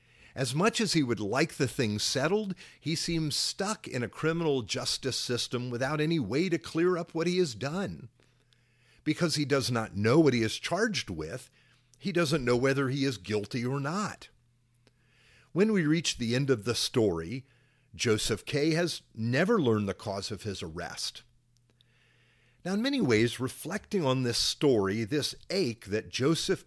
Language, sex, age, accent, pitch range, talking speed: English, male, 50-69, American, 115-165 Hz, 170 wpm